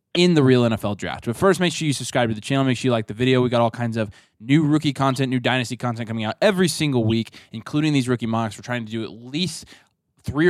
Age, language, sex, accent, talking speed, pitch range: 20-39, English, male, American, 270 wpm, 110-140 Hz